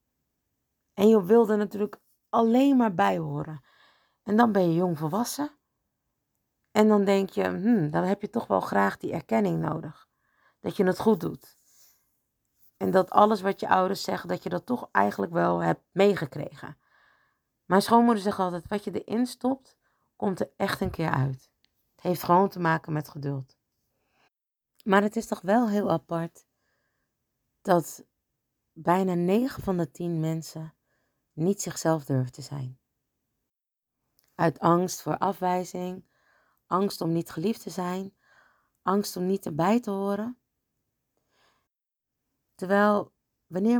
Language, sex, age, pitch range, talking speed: Dutch, female, 40-59, 155-215 Hz, 145 wpm